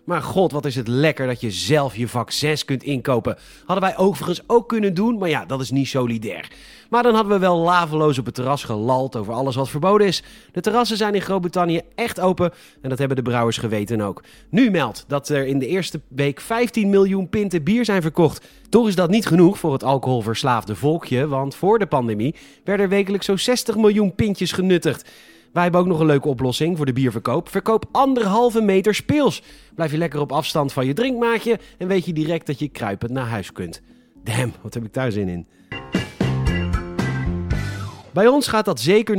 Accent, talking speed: Dutch, 205 wpm